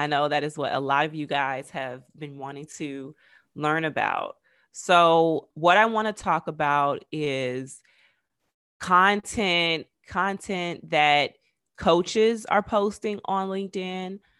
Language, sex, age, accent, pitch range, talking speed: English, female, 20-39, American, 145-175 Hz, 135 wpm